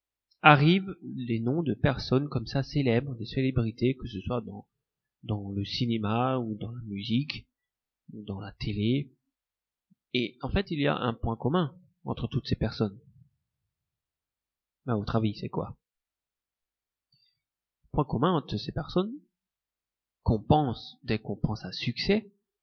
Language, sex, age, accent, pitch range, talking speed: French, male, 30-49, French, 110-145 Hz, 150 wpm